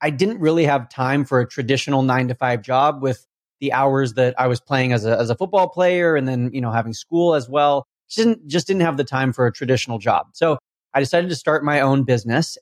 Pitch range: 130-160 Hz